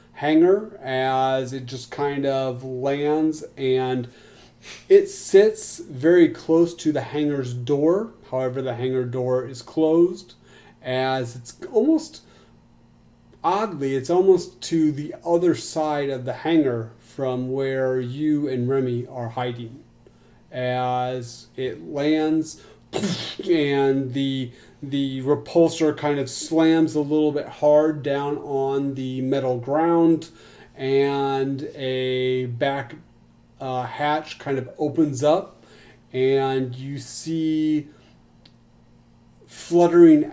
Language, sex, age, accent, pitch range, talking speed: English, male, 30-49, American, 130-155 Hz, 110 wpm